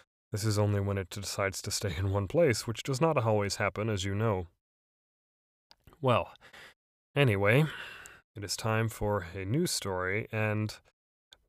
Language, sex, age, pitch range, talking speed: English, male, 20-39, 100-120 Hz, 150 wpm